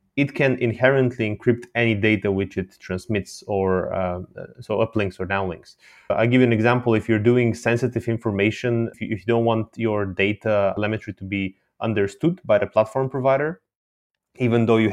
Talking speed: 175 wpm